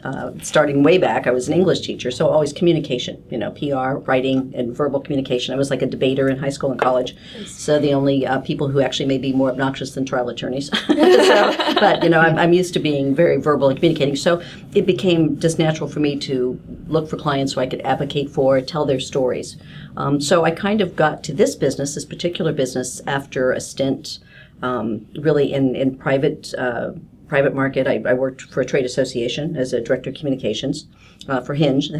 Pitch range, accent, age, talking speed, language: 135-160 Hz, American, 50-69, 210 wpm, English